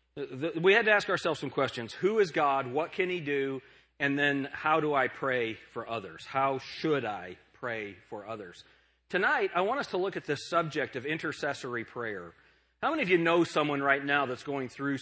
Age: 40-59